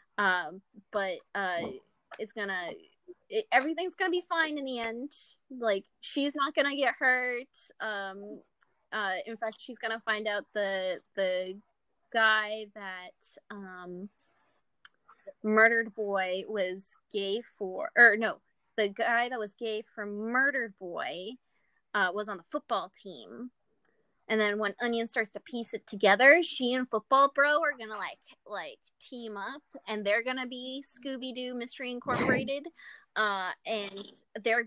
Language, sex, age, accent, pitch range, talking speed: English, female, 20-39, American, 200-260 Hz, 140 wpm